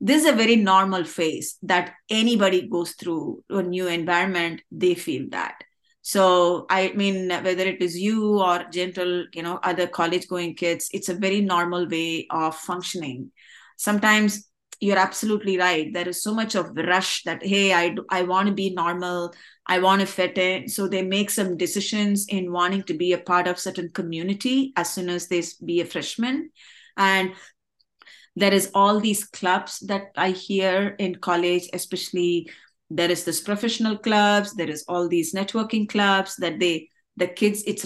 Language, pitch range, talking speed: English, 175-205 Hz, 175 wpm